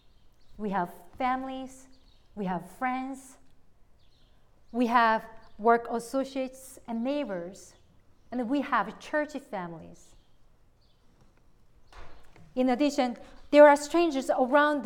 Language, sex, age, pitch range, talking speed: English, female, 40-59, 210-270 Hz, 95 wpm